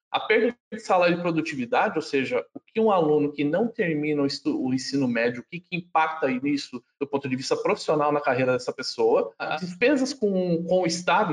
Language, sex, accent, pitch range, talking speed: Portuguese, male, Brazilian, 145-195 Hz, 210 wpm